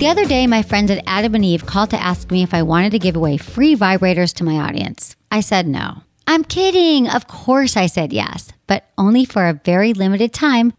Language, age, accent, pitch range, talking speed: English, 40-59, American, 180-255 Hz, 230 wpm